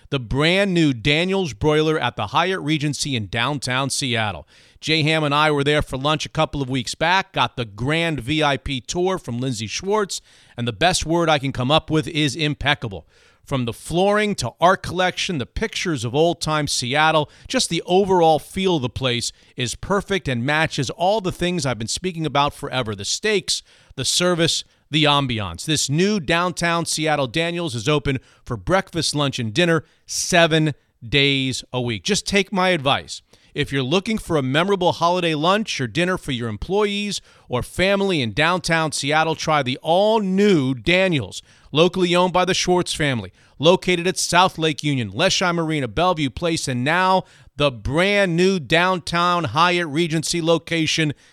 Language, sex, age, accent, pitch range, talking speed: English, male, 40-59, American, 135-175 Hz, 170 wpm